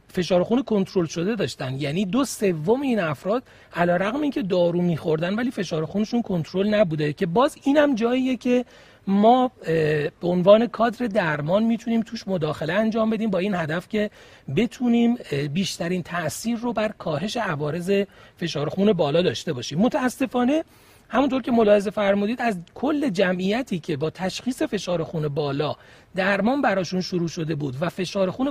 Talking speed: 155 wpm